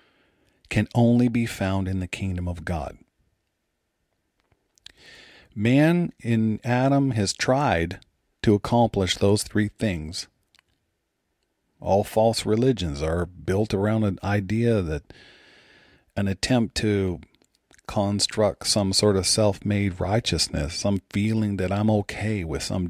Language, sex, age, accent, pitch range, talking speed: English, male, 40-59, American, 90-115 Hz, 115 wpm